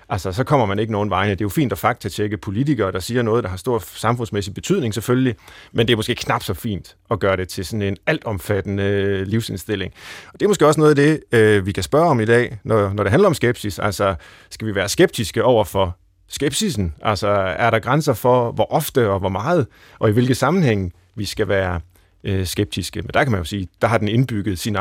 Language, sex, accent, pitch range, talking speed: Danish, male, native, 100-140 Hz, 235 wpm